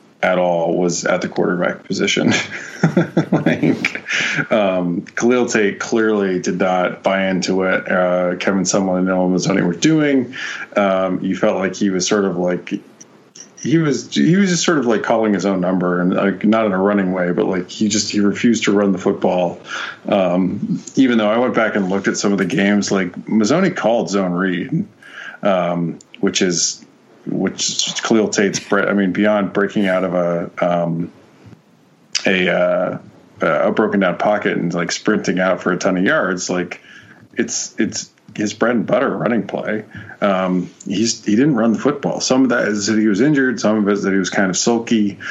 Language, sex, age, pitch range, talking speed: English, male, 30-49, 90-110 Hz, 190 wpm